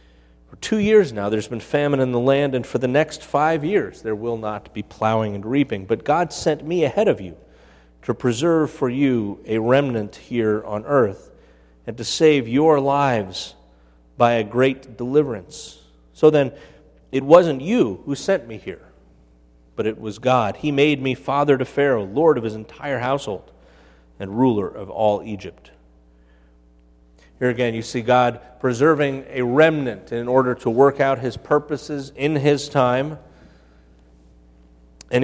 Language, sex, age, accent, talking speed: English, male, 30-49, American, 165 wpm